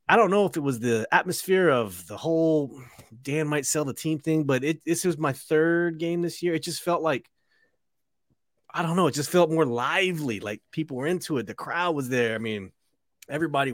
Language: English